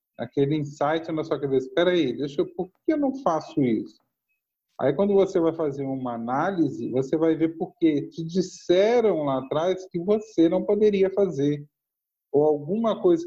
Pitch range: 130-175 Hz